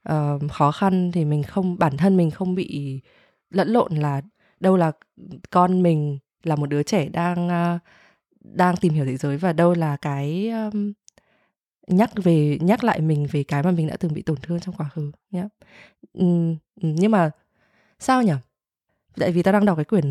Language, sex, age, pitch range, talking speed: Vietnamese, female, 20-39, 155-200 Hz, 190 wpm